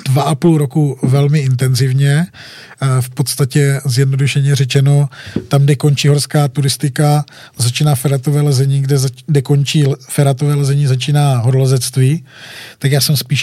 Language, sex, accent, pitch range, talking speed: Czech, male, native, 135-150 Hz, 130 wpm